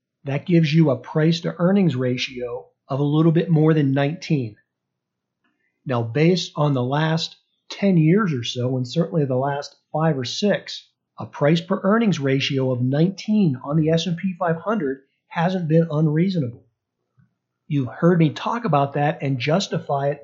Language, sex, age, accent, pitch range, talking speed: English, male, 50-69, American, 135-170 Hz, 150 wpm